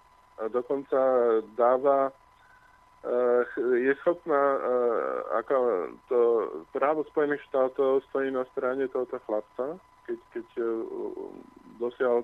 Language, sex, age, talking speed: Slovak, male, 20-39, 105 wpm